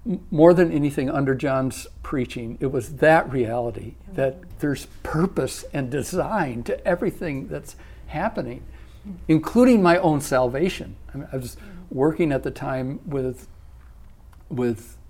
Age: 60-79